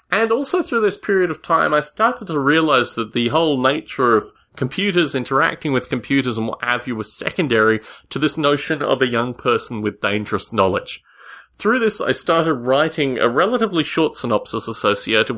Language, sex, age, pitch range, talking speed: English, male, 30-49, 115-180 Hz, 180 wpm